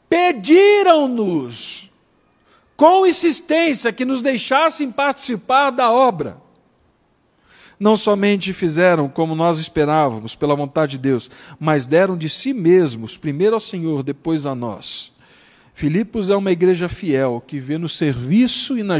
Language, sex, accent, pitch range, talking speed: Portuguese, male, Brazilian, 135-180 Hz, 130 wpm